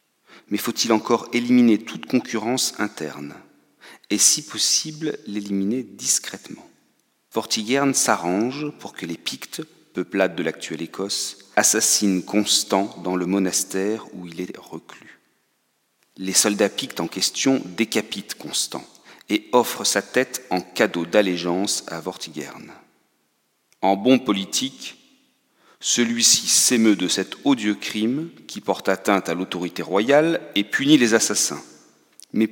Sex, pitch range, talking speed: male, 95-120 Hz, 125 wpm